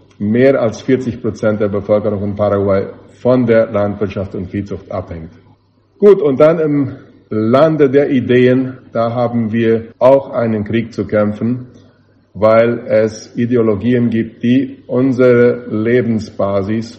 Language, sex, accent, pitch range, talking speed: German, male, German, 105-120 Hz, 125 wpm